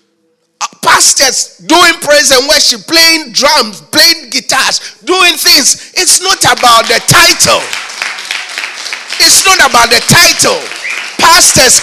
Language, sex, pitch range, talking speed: English, male, 210-295 Hz, 110 wpm